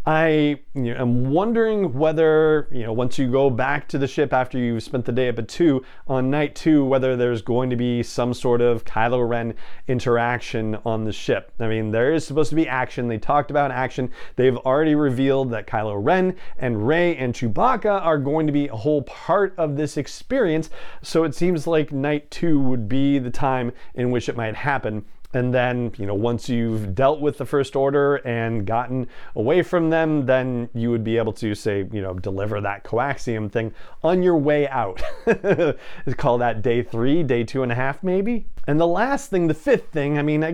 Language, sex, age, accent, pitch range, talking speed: English, male, 40-59, American, 120-150 Hz, 205 wpm